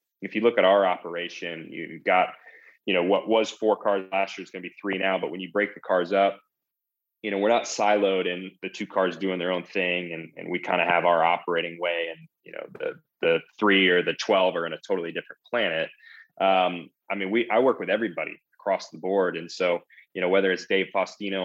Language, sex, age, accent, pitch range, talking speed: English, male, 20-39, American, 85-105 Hz, 240 wpm